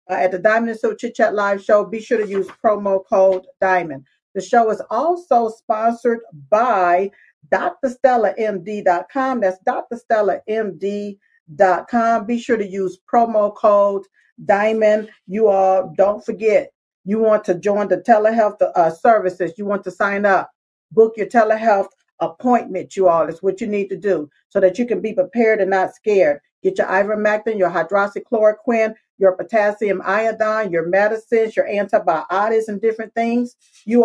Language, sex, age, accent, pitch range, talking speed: English, female, 50-69, American, 190-230 Hz, 150 wpm